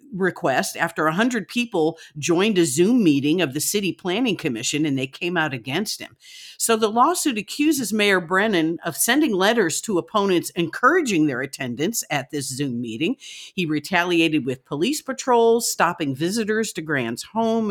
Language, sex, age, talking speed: English, female, 50-69, 160 wpm